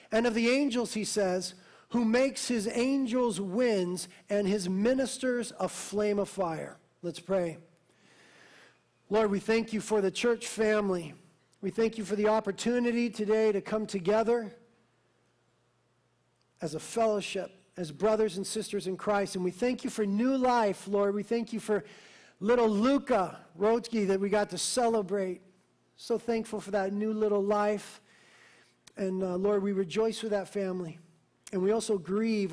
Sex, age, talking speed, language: male, 40-59, 160 wpm, English